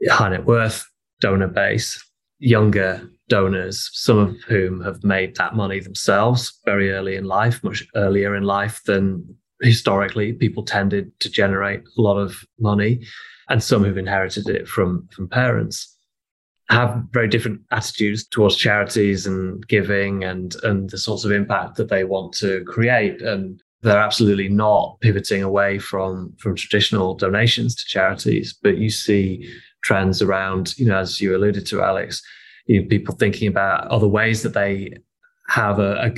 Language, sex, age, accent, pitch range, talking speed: English, male, 20-39, British, 100-115 Hz, 155 wpm